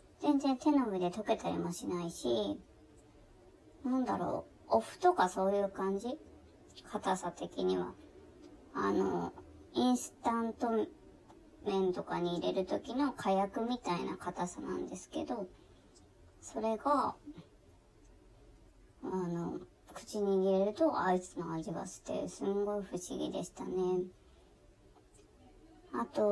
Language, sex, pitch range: Japanese, male, 180-240 Hz